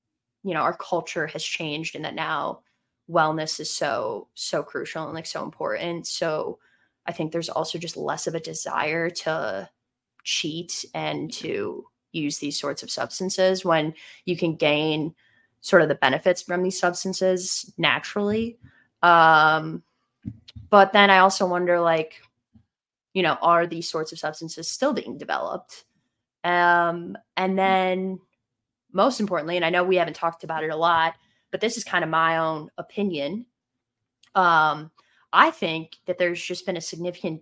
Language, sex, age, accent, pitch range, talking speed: English, female, 20-39, American, 160-185 Hz, 155 wpm